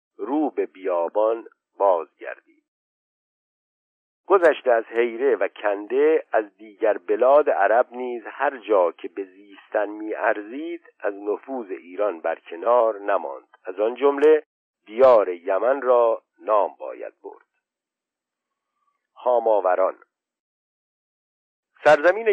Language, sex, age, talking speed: Persian, male, 50-69, 100 wpm